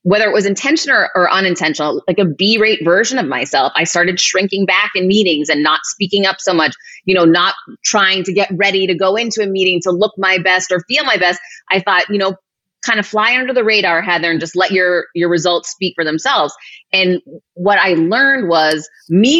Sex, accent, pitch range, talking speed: female, American, 165-200 Hz, 225 wpm